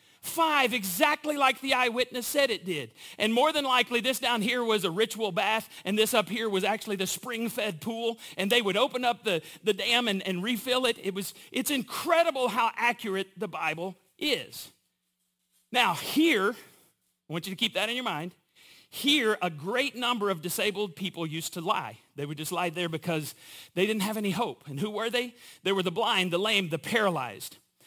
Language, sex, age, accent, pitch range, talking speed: English, male, 40-59, American, 190-260 Hz, 200 wpm